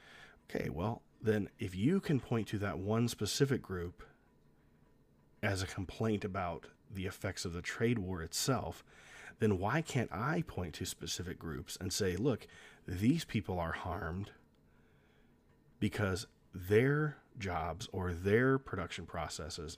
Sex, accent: male, American